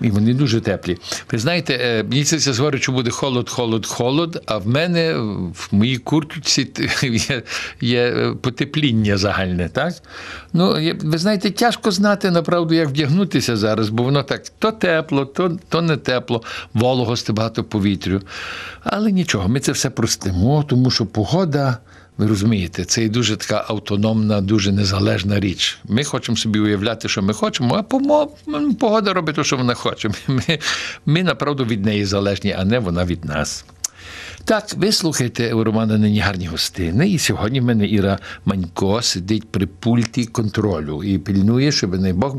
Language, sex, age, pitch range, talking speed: Ukrainian, male, 60-79, 100-145 Hz, 165 wpm